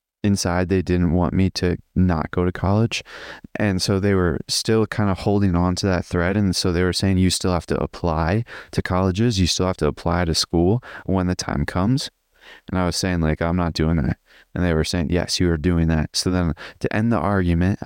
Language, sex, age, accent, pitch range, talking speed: English, male, 20-39, American, 85-100 Hz, 230 wpm